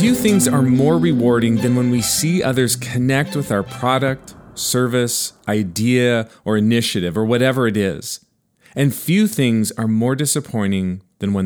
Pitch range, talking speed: 110-140 Hz, 155 wpm